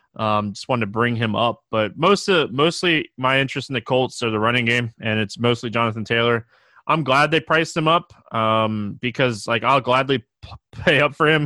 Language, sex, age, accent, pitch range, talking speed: English, male, 20-39, American, 115-145 Hz, 210 wpm